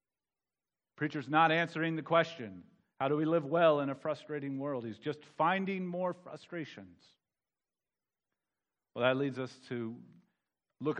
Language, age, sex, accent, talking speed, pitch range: English, 40-59, male, American, 135 wpm, 125-175 Hz